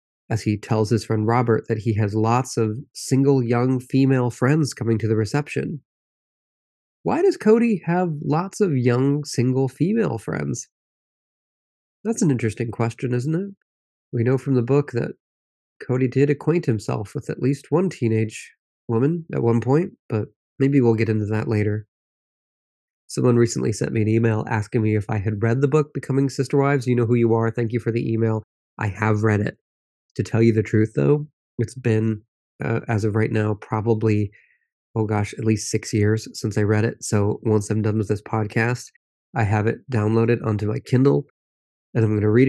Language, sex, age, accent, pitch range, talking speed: English, male, 30-49, American, 110-130 Hz, 190 wpm